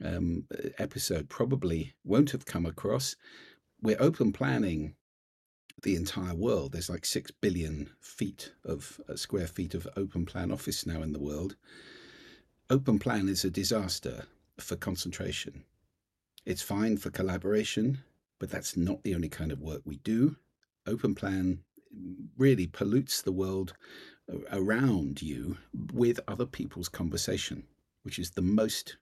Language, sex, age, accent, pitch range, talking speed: English, male, 50-69, British, 85-110 Hz, 140 wpm